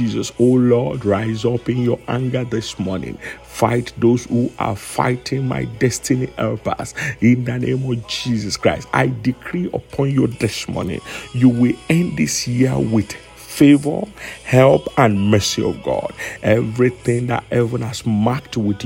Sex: male